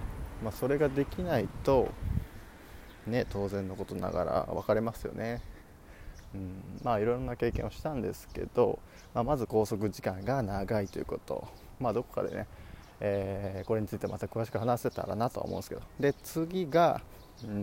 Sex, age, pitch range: male, 20-39, 95-125 Hz